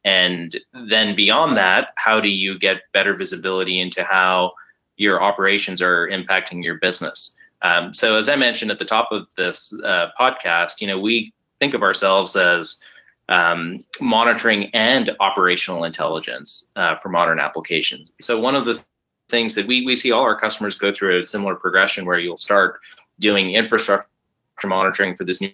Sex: male